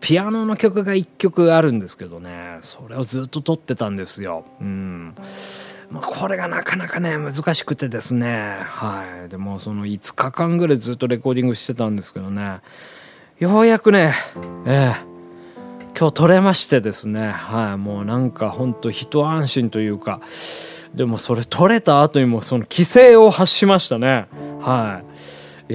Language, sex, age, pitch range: Japanese, male, 20-39, 95-155 Hz